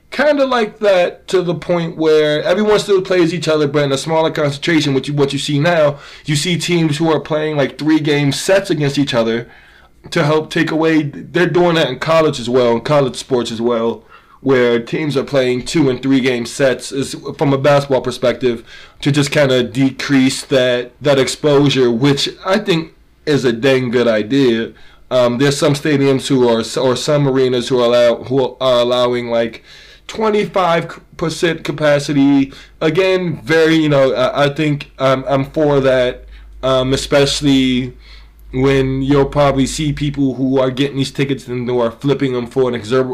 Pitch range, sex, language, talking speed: 125-155 Hz, male, English, 180 wpm